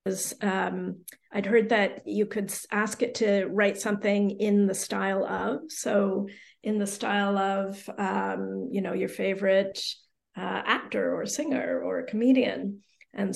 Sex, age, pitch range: female, 40-59, 200-230 Hz